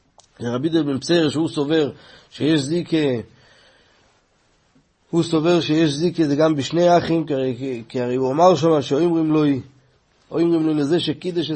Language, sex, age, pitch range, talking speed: Hebrew, male, 30-49, 140-170 Hz, 135 wpm